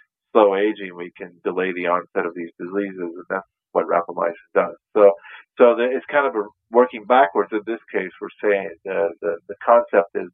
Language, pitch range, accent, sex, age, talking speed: English, 90-105 Hz, American, male, 40-59, 190 wpm